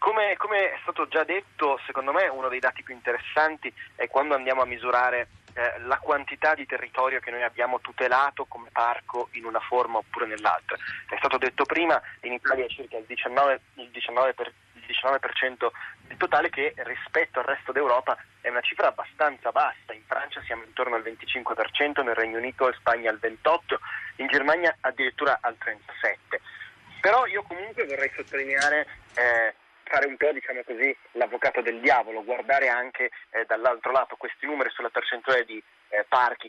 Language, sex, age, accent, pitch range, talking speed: Italian, male, 30-49, native, 120-140 Hz, 175 wpm